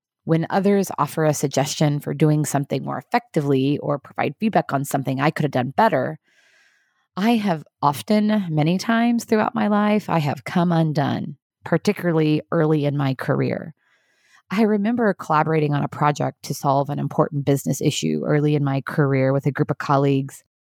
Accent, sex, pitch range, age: American, female, 140-200 Hz, 30-49